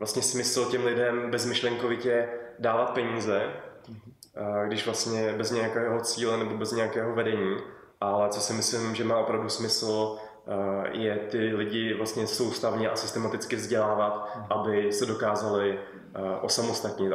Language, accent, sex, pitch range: Czech, native, male, 100-110 Hz